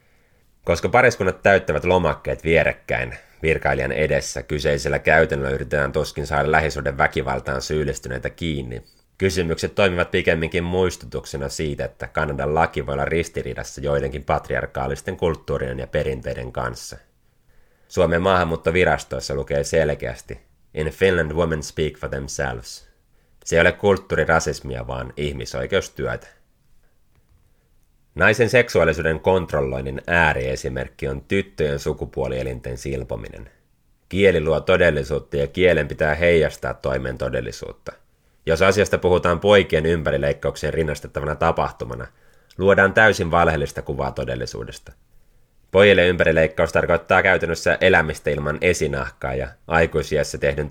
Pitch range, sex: 65-85 Hz, male